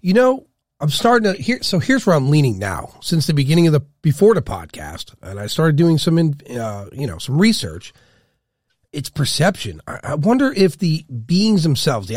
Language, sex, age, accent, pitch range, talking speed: English, male, 40-59, American, 125-180 Hz, 195 wpm